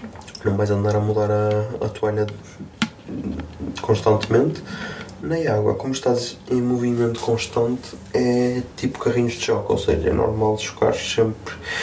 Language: Portuguese